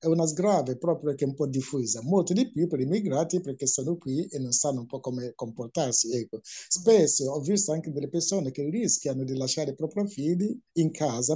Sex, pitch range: male, 135-175 Hz